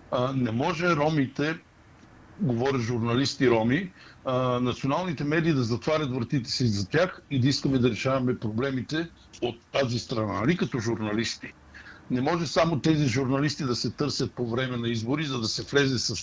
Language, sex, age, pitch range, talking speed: Bulgarian, male, 60-79, 110-145 Hz, 165 wpm